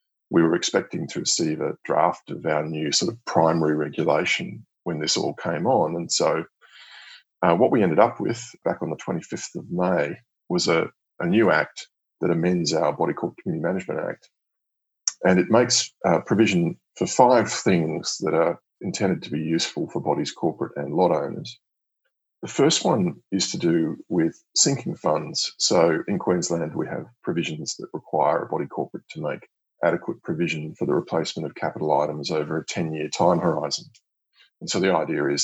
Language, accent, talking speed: English, Australian, 180 wpm